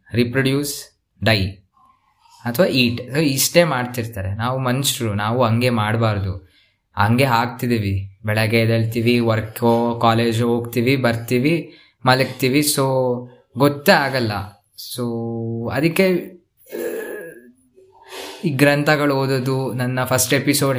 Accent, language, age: native, Kannada, 20-39